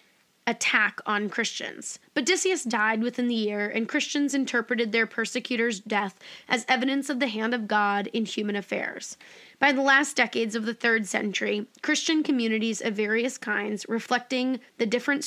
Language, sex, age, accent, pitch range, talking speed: English, female, 20-39, American, 220-275 Hz, 155 wpm